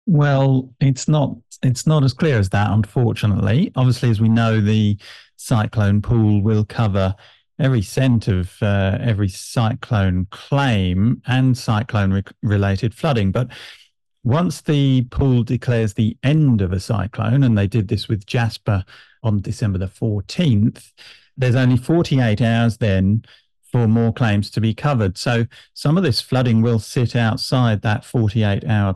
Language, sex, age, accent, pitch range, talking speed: English, male, 50-69, British, 105-125 Hz, 150 wpm